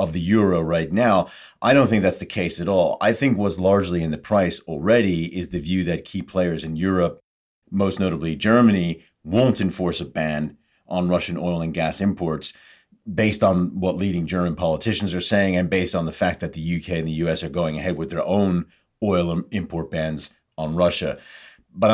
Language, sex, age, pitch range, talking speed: English, male, 40-59, 85-105 Hz, 200 wpm